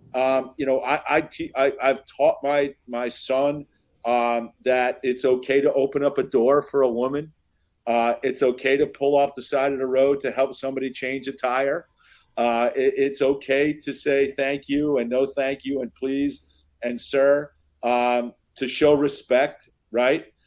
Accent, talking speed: American, 180 wpm